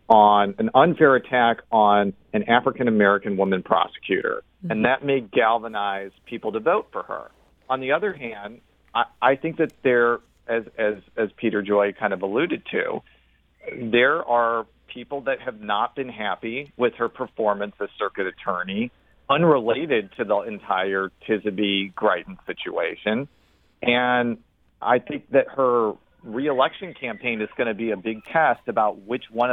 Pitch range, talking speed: 105-130 Hz, 150 wpm